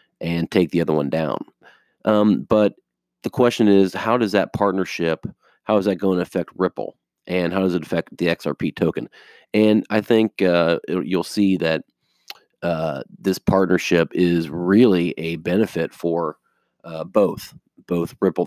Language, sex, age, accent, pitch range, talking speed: English, male, 40-59, American, 85-95 Hz, 160 wpm